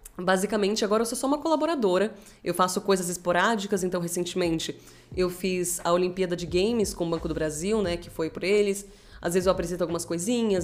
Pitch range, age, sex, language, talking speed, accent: 175-210 Hz, 20-39, female, Portuguese, 195 wpm, Brazilian